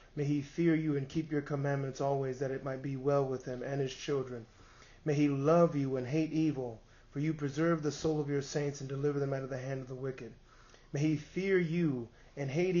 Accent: American